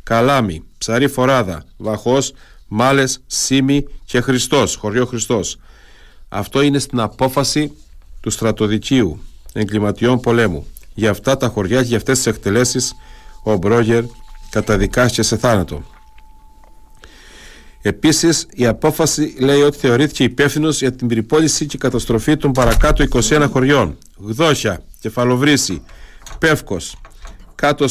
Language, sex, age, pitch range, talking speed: Greek, male, 50-69, 110-140 Hz, 110 wpm